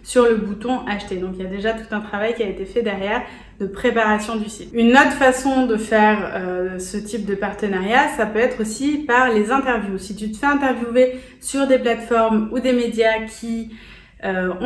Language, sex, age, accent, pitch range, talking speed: French, female, 30-49, French, 205-250 Hz, 210 wpm